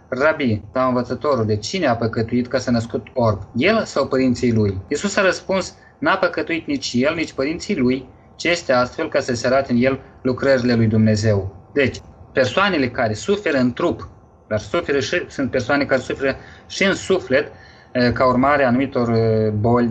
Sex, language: male, Romanian